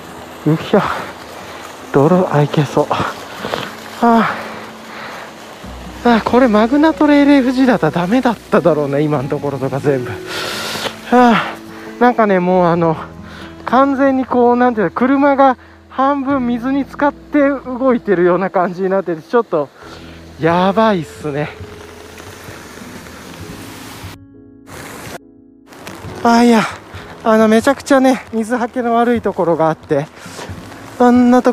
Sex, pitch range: male, 150-240 Hz